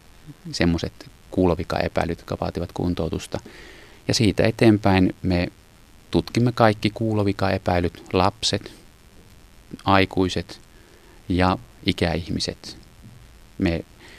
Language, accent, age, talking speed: Finnish, native, 30-49, 70 wpm